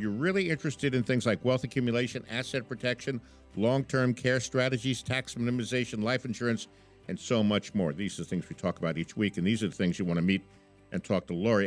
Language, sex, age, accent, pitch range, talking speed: English, male, 60-79, American, 105-160 Hz, 225 wpm